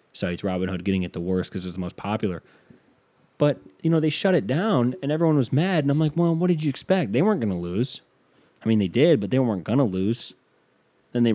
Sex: male